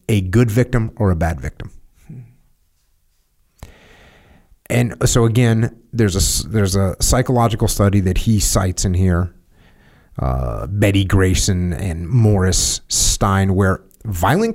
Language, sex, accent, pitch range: English, male, American, 95-130 Hz